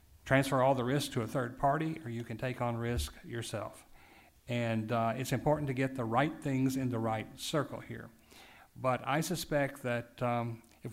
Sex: male